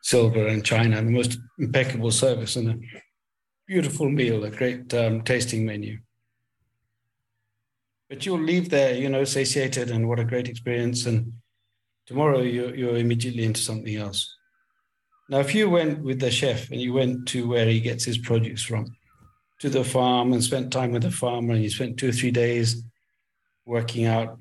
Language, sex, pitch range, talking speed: Dutch, male, 115-130 Hz, 180 wpm